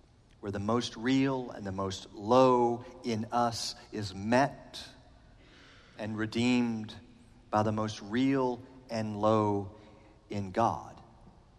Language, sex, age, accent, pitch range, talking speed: English, male, 40-59, American, 105-125 Hz, 115 wpm